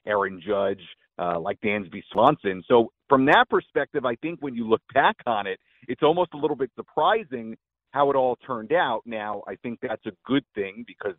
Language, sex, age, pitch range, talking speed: English, male, 40-59, 95-120 Hz, 200 wpm